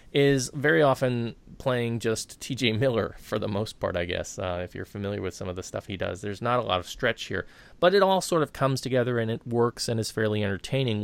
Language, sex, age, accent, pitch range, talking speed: English, male, 20-39, American, 100-125 Hz, 245 wpm